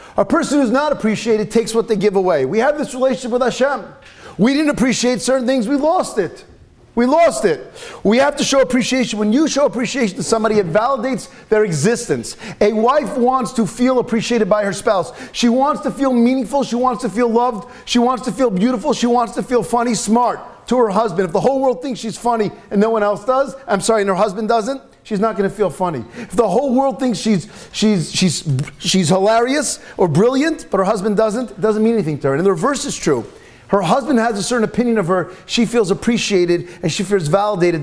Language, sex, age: English, male, 40-59